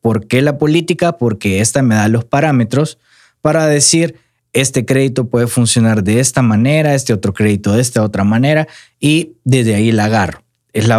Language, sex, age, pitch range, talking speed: Spanish, male, 20-39, 115-145 Hz, 180 wpm